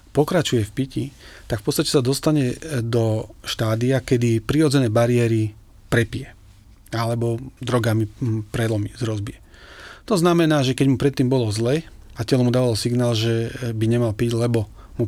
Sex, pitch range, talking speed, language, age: male, 110-130 Hz, 145 wpm, Slovak, 40-59